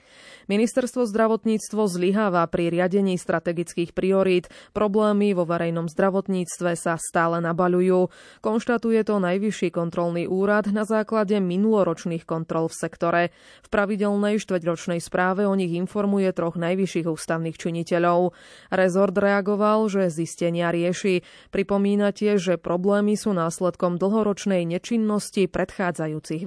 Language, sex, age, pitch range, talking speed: Slovak, female, 20-39, 170-205 Hz, 110 wpm